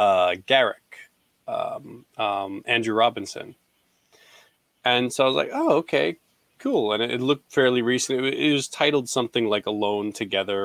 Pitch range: 110-135 Hz